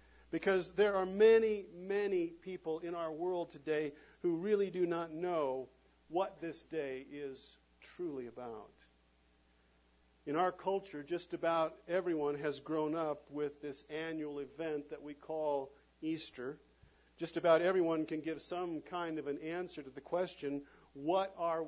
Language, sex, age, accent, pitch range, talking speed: English, male, 50-69, American, 140-190 Hz, 145 wpm